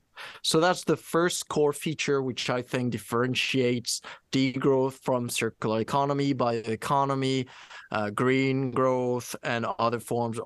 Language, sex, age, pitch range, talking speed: English, male, 20-39, 120-155 Hz, 125 wpm